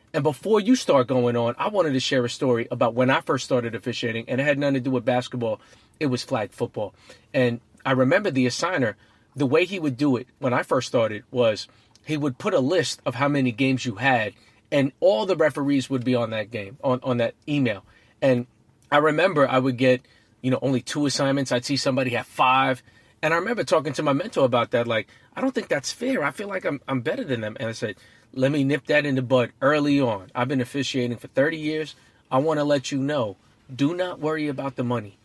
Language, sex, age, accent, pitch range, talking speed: English, male, 30-49, American, 120-145 Hz, 235 wpm